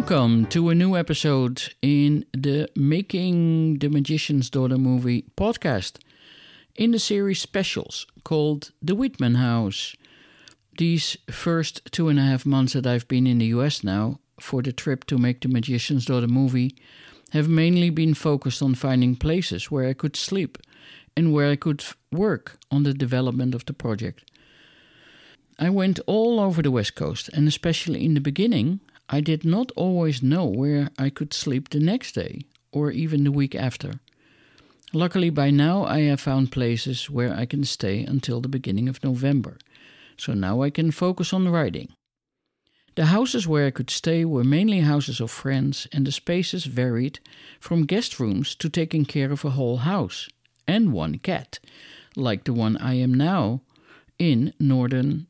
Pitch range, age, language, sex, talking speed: 130-165 Hz, 60-79, English, male, 165 wpm